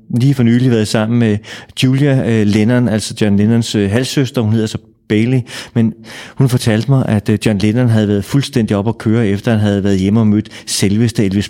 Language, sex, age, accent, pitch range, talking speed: Danish, male, 30-49, native, 105-120 Hz, 200 wpm